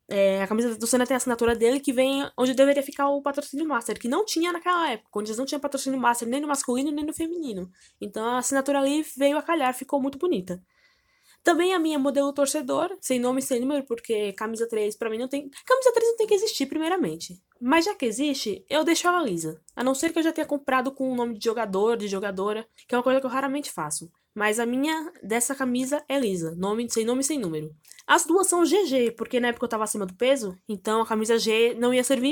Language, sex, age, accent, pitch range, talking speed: Portuguese, female, 10-29, Brazilian, 230-300 Hz, 240 wpm